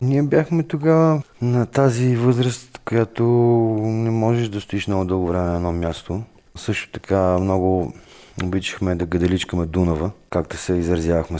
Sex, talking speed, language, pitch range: male, 140 wpm, Bulgarian, 90-115 Hz